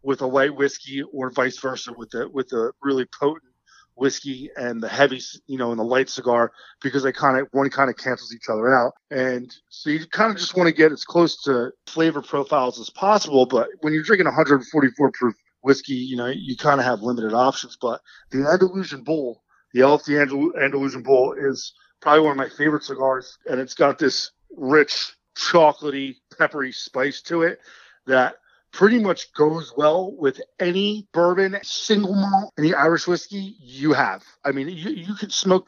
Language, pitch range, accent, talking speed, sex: English, 130-155 Hz, American, 185 wpm, male